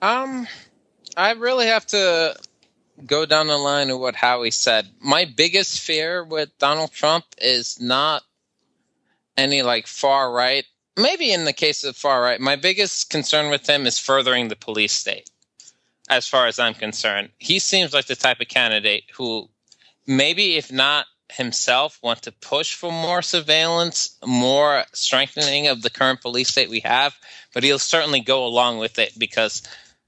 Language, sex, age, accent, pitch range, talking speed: English, male, 20-39, American, 115-150 Hz, 160 wpm